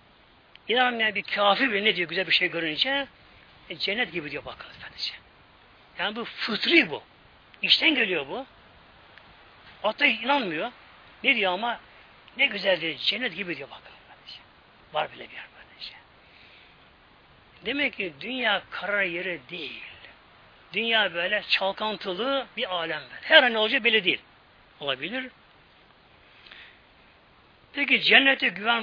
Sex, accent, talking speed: male, native, 130 wpm